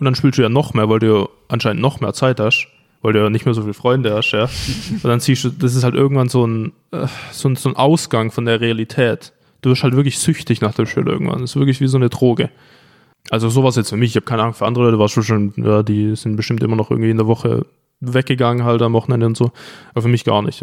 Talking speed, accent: 270 wpm, German